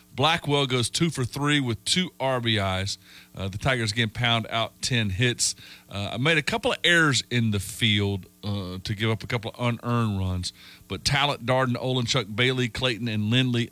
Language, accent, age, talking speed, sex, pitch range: English, American, 40-59, 185 wpm, male, 105-125 Hz